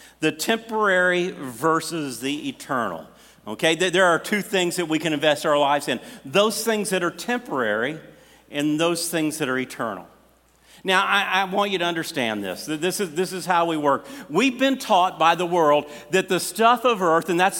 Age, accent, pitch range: 50-69, American, 155-205 Hz